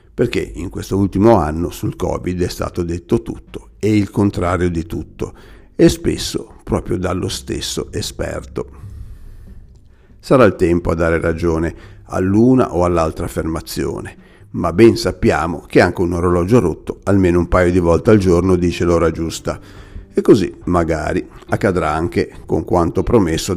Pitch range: 85-100 Hz